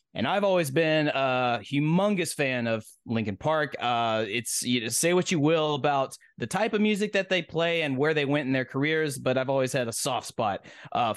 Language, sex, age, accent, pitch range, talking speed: English, male, 30-49, American, 120-160 Hz, 220 wpm